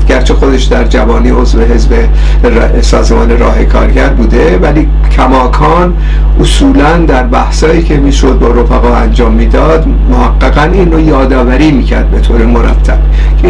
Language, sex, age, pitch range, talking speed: Persian, male, 50-69, 115-155 Hz, 135 wpm